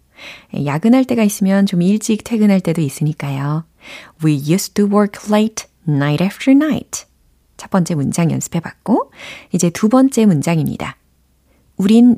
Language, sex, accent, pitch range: Korean, female, native, 155-235 Hz